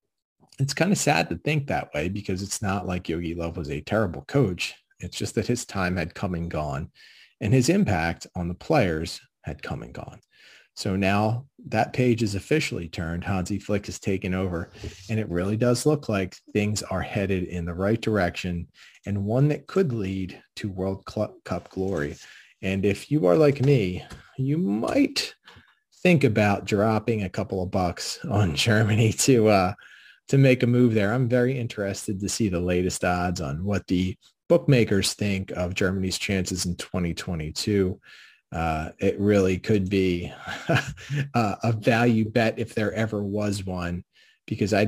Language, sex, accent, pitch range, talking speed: English, male, American, 90-115 Hz, 170 wpm